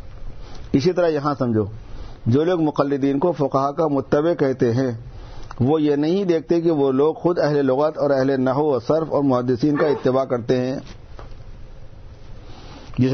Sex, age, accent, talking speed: male, 50-69, Indian, 160 wpm